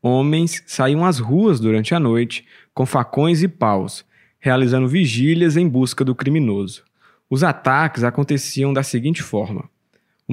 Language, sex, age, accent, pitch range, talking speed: English, male, 20-39, Brazilian, 120-155 Hz, 140 wpm